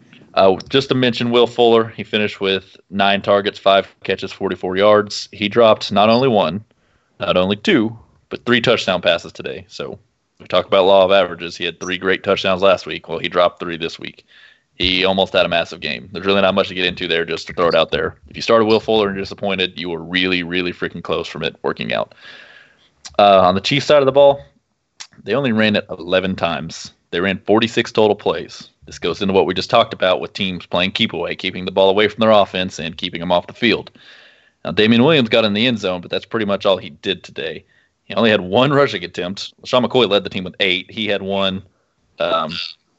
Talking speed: 230 wpm